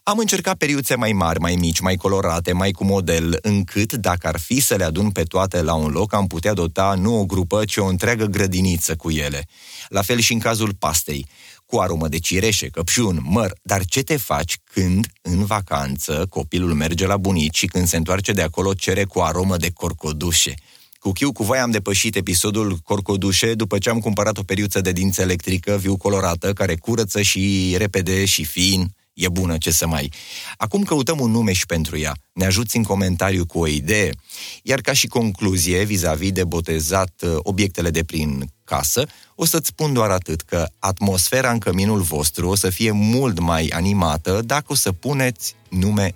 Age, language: 30-49, Romanian